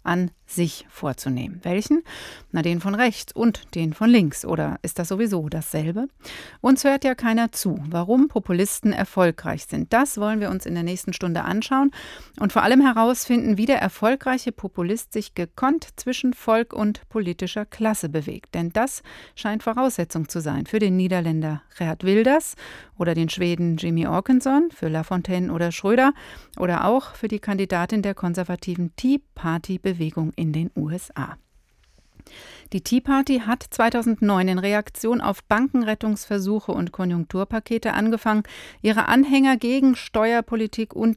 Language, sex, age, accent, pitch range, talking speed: German, female, 40-59, German, 175-230 Hz, 145 wpm